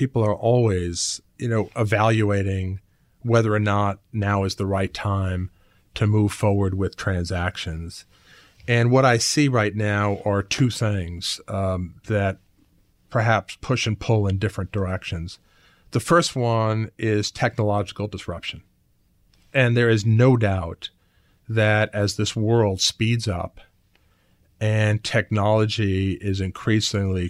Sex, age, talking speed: male, 40-59, 125 wpm